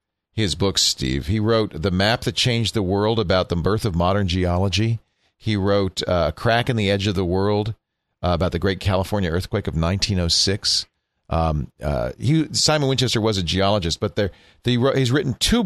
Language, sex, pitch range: English, male, 95-125 Hz